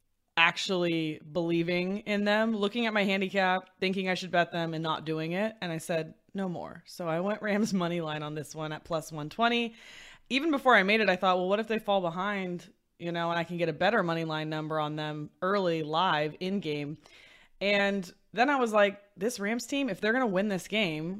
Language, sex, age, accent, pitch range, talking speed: English, female, 20-39, American, 165-200 Hz, 225 wpm